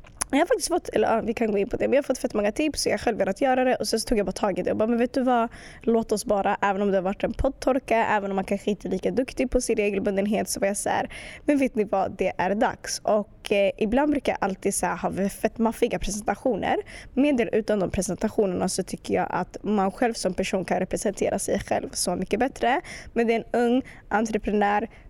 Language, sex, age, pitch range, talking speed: Swedish, female, 20-39, 205-260 Hz, 260 wpm